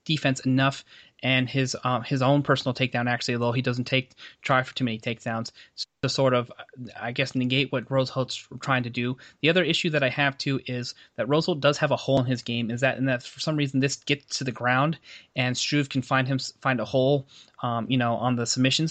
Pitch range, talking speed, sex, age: 125-140 Hz, 230 wpm, male, 30-49